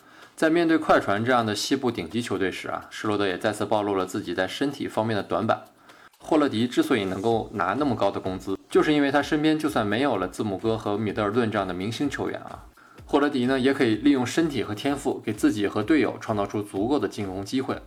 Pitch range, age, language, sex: 100-130 Hz, 20-39, Chinese, male